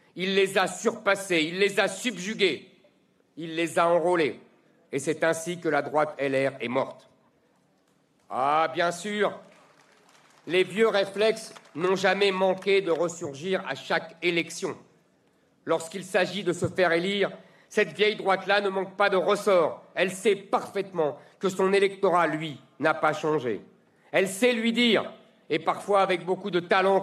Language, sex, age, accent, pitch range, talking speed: French, male, 50-69, French, 170-200 Hz, 155 wpm